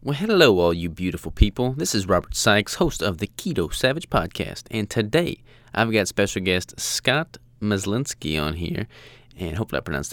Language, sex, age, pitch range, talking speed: English, male, 20-39, 90-110 Hz, 180 wpm